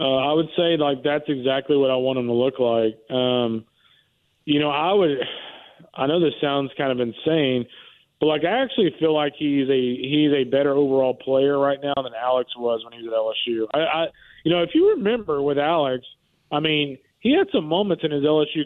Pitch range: 135-165 Hz